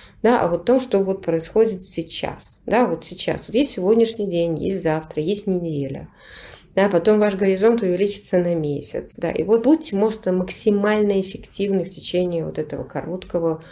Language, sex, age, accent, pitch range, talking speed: Russian, female, 30-49, native, 170-225 Hz, 165 wpm